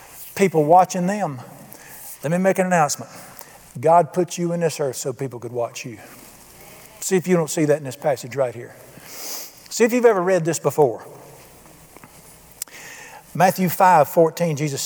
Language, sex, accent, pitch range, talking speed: English, male, American, 165-225 Hz, 165 wpm